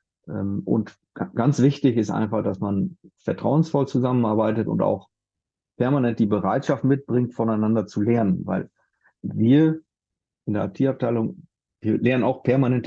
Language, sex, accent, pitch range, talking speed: German, male, German, 110-135 Hz, 125 wpm